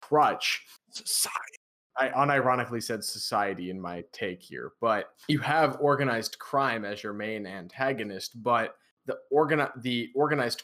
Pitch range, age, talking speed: 115-135 Hz, 20-39, 135 wpm